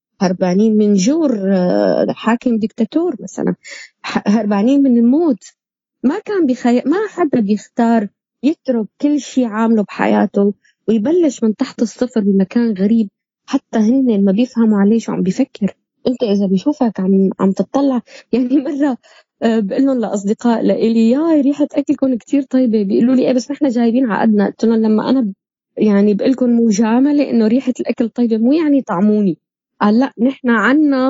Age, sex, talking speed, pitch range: 20-39, female, 145 wpm, 210-270 Hz